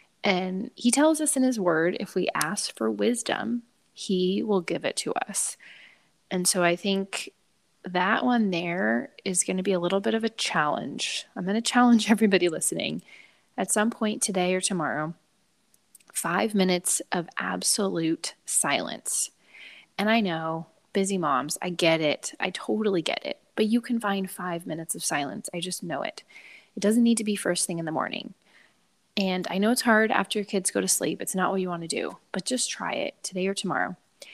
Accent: American